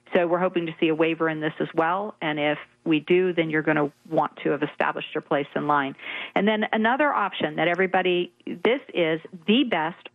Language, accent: English, American